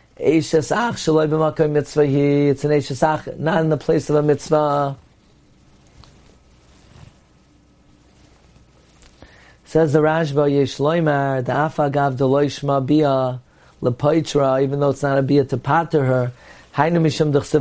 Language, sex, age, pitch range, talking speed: English, male, 40-59, 130-160 Hz, 50 wpm